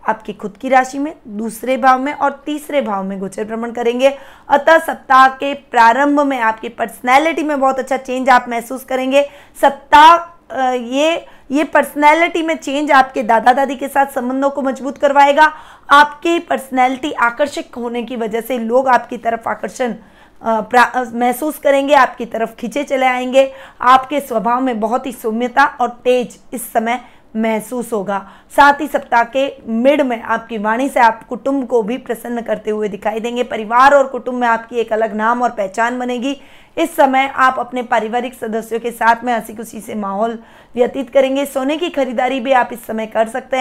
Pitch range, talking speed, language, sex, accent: 230-275 Hz, 175 wpm, Hindi, female, native